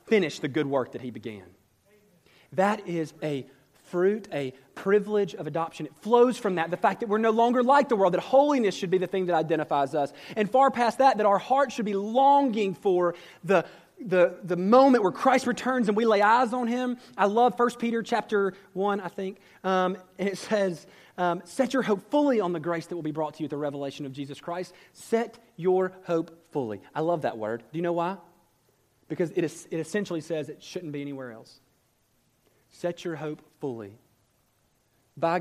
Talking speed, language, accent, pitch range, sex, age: 205 wpm, English, American, 140-200 Hz, male, 30-49